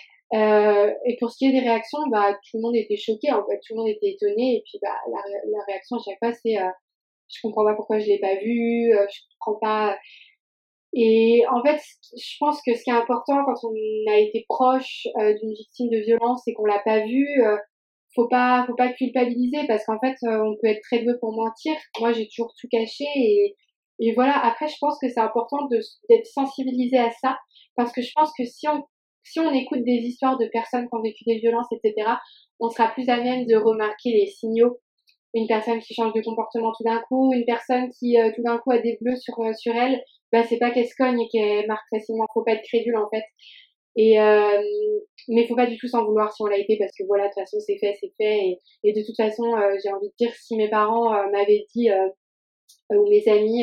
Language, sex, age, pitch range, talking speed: French, female, 20-39, 215-250 Hz, 245 wpm